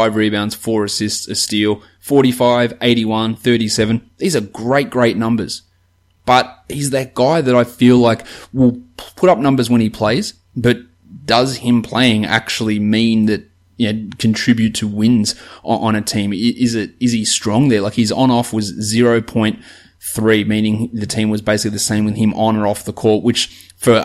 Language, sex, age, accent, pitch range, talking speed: English, male, 20-39, Australian, 105-120 Hz, 175 wpm